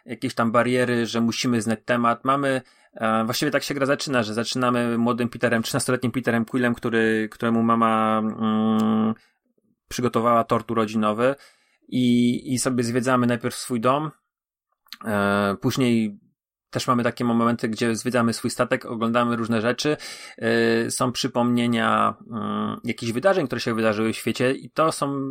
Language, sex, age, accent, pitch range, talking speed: Polish, male, 30-49, native, 110-125 Hz, 145 wpm